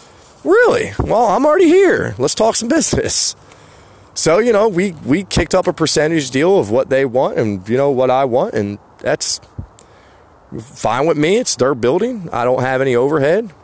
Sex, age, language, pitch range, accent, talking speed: male, 30-49, English, 100-160 Hz, American, 185 wpm